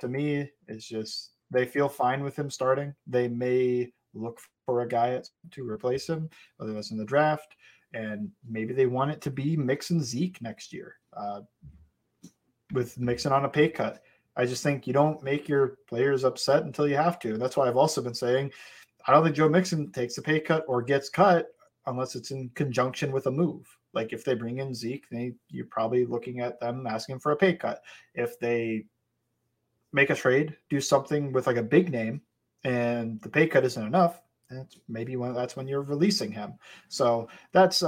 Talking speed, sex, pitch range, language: 195 wpm, male, 120-145 Hz, English